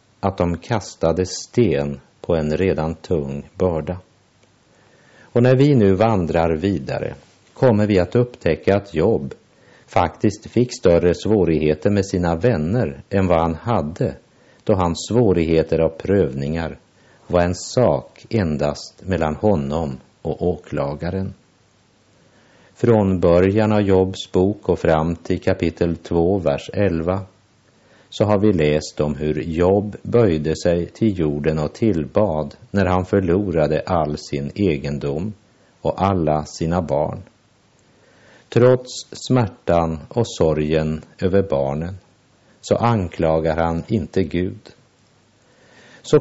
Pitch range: 80-105 Hz